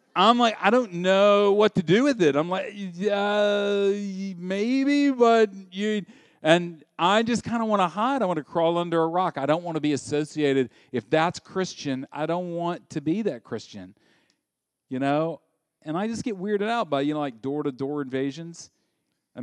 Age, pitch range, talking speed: 40-59, 140-195 Hz, 190 wpm